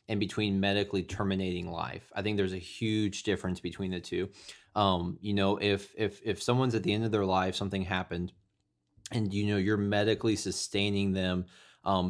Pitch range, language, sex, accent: 95-110 Hz, English, male, American